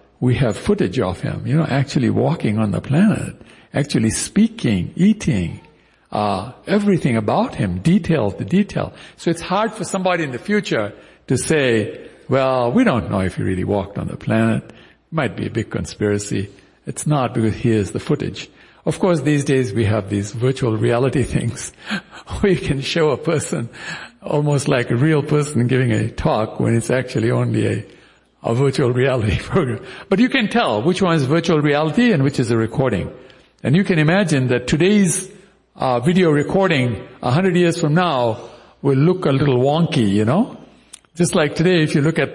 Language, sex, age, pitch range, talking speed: English, male, 60-79, 120-170 Hz, 185 wpm